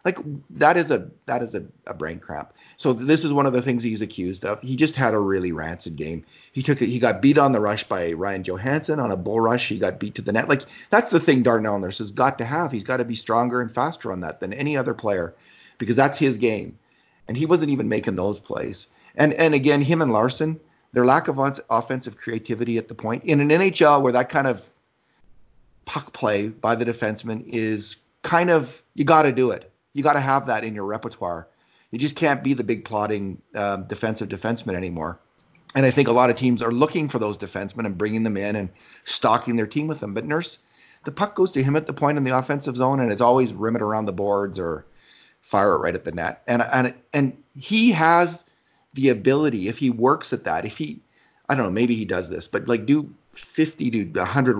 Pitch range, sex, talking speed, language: 105-140 Hz, male, 235 wpm, English